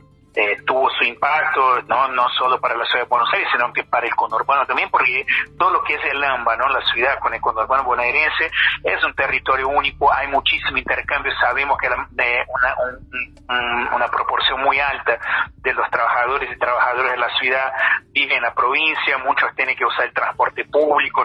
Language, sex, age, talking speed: Spanish, male, 40-59, 200 wpm